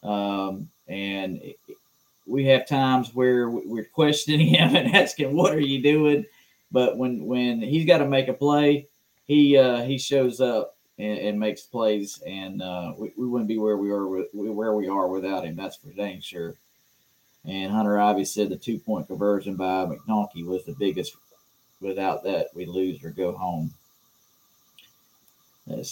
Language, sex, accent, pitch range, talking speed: English, male, American, 95-130 Hz, 170 wpm